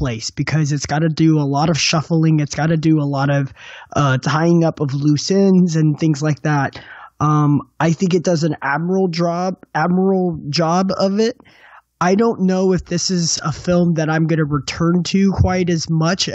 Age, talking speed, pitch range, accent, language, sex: 20-39, 205 wpm, 150-175 Hz, American, English, male